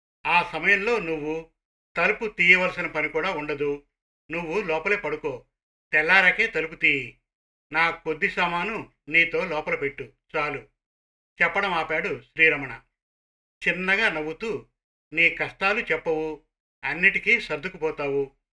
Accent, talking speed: native, 100 wpm